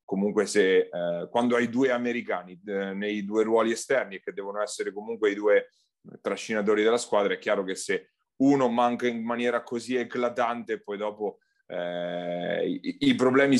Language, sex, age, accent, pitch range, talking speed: Italian, male, 30-49, native, 105-145 Hz, 160 wpm